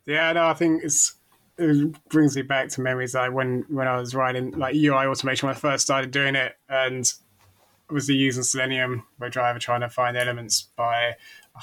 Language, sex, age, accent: English, male, 20-39, British